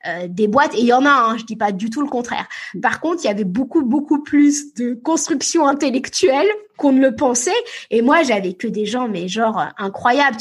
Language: French